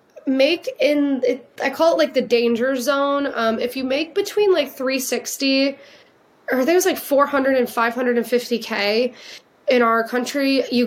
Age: 20-39